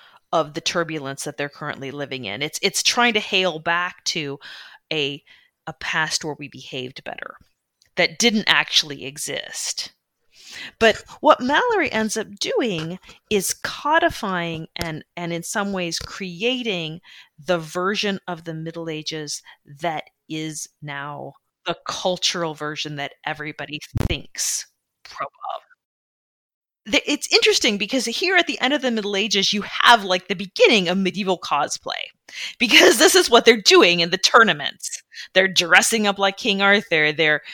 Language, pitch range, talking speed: English, 150-205 Hz, 145 wpm